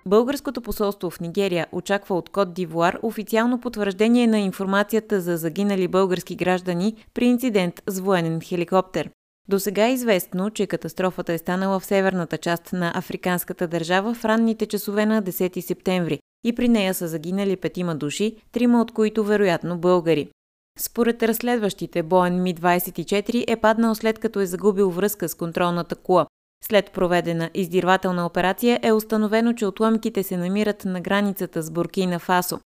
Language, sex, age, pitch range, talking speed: Bulgarian, female, 20-39, 175-215 Hz, 150 wpm